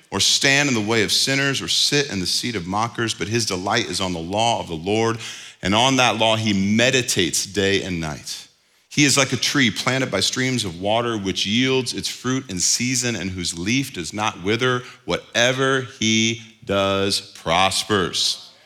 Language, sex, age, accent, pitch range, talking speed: English, male, 40-59, American, 105-135 Hz, 190 wpm